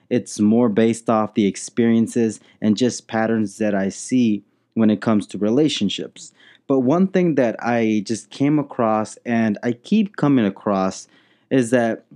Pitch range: 110-145 Hz